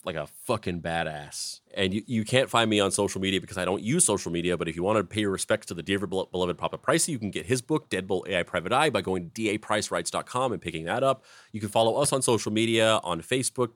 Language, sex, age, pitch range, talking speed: English, male, 30-49, 95-120 Hz, 260 wpm